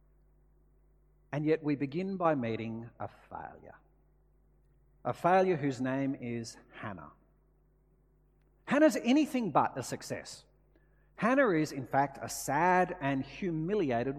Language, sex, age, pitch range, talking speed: English, male, 50-69, 115-190 Hz, 115 wpm